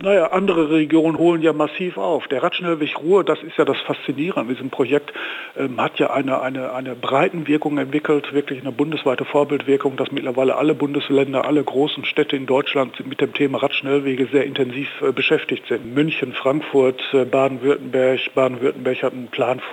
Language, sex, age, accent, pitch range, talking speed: German, male, 60-79, German, 135-160 Hz, 175 wpm